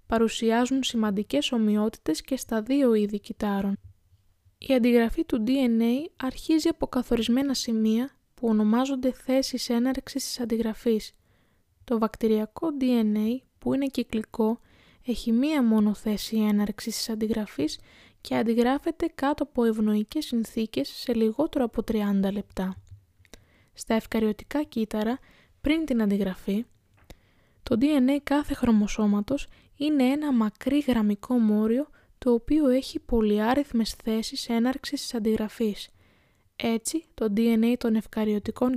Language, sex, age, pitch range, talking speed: Greek, female, 20-39, 220-265 Hz, 115 wpm